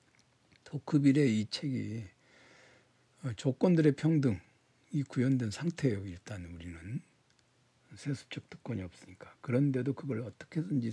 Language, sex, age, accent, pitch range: Korean, male, 60-79, native, 105-140 Hz